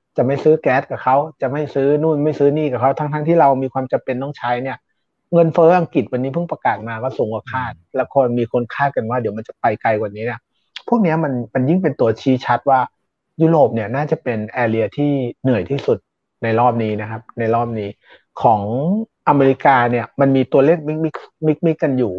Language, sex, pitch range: Thai, male, 125-155 Hz